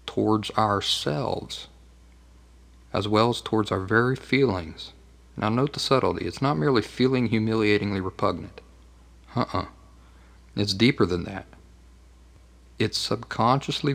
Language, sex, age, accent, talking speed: English, male, 50-69, American, 115 wpm